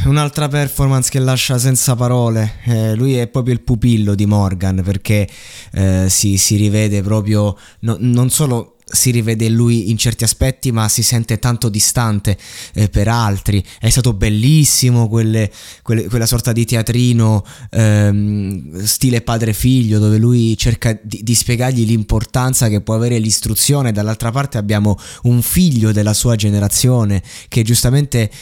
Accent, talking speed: native, 145 wpm